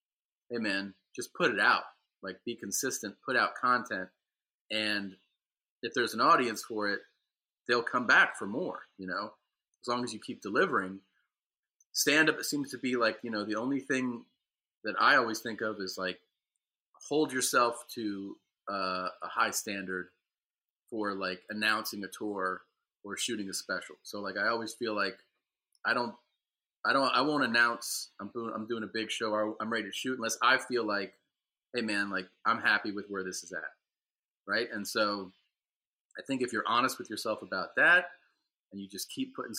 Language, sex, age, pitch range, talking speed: English, male, 30-49, 95-120 Hz, 185 wpm